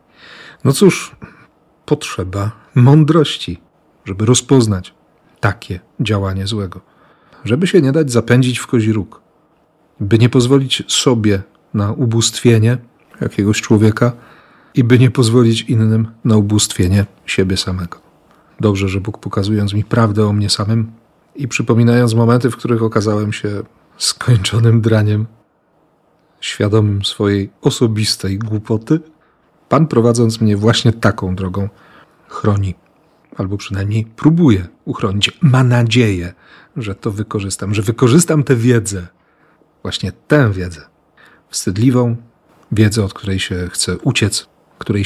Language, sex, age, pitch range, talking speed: Polish, male, 40-59, 100-125 Hz, 115 wpm